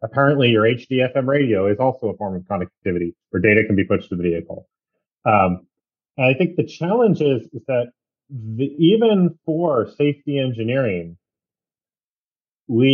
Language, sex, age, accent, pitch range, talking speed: English, male, 30-49, American, 110-145 Hz, 155 wpm